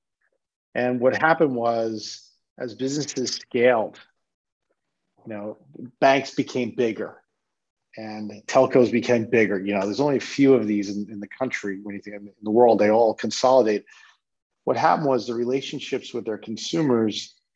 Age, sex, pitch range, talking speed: 40-59, male, 110-135 Hz, 145 wpm